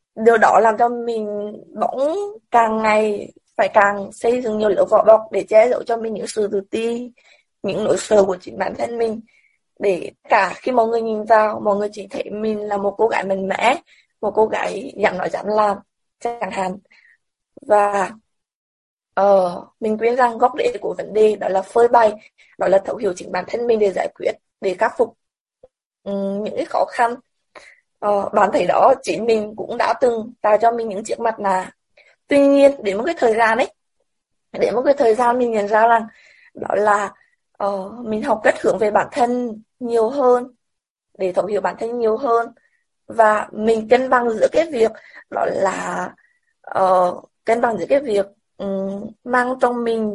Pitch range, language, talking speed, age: 205-240 Hz, Vietnamese, 200 wpm, 20-39